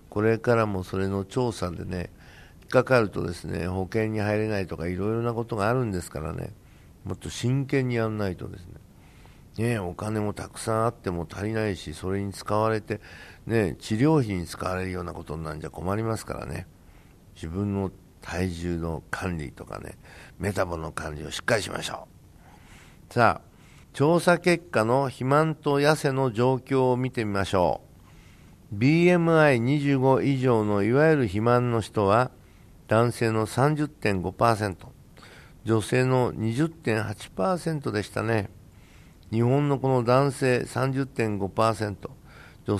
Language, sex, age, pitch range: Japanese, male, 60-79, 95-130 Hz